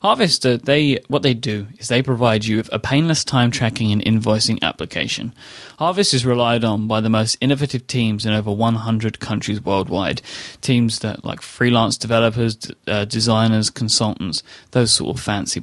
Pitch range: 110-135 Hz